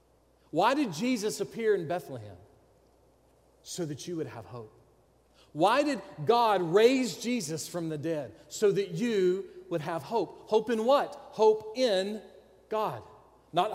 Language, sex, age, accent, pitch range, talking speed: English, male, 40-59, American, 140-220 Hz, 145 wpm